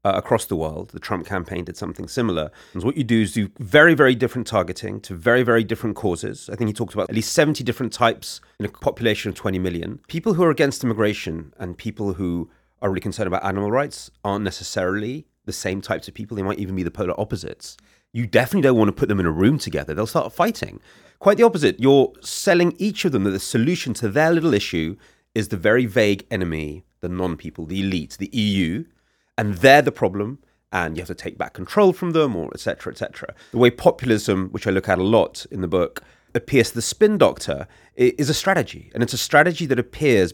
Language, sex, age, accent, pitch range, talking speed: English, male, 30-49, British, 95-125 Hz, 225 wpm